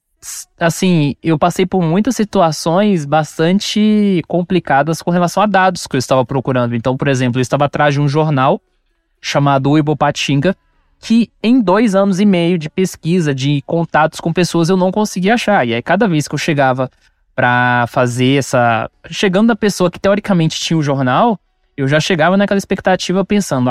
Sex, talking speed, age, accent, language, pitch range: male, 170 wpm, 20-39, Brazilian, Portuguese, 145-195 Hz